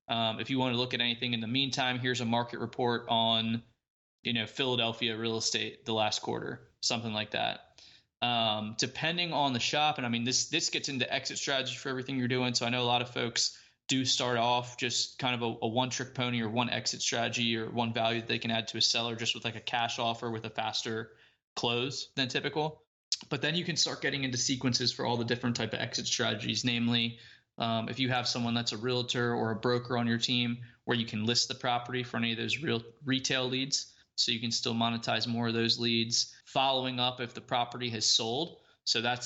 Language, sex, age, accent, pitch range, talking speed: English, male, 20-39, American, 115-130 Hz, 230 wpm